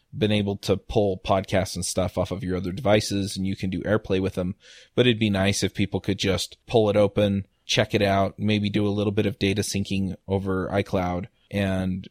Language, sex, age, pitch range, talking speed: English, male, 20-39, 95-110 Hz, 220 wpm